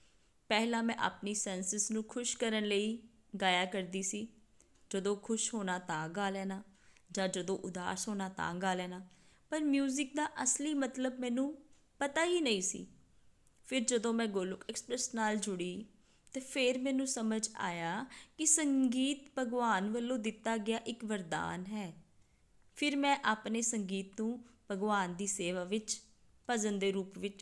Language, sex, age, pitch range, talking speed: Punjabi, female, 20-39, 190-245 Hz, 140 wpm